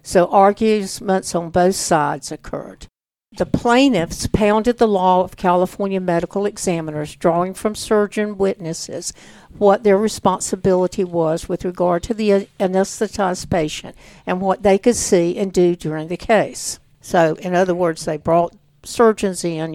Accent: American